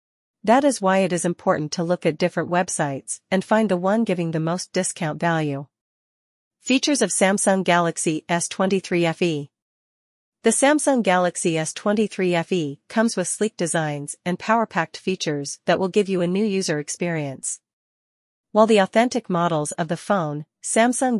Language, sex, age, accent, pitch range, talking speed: English, female, 40-59, American, 155-200 Hz, 150 wpm